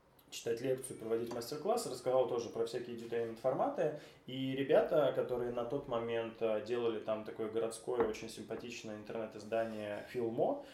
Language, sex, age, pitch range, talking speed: Russian, male, 20-39, 115-125 Hz, 135 wpm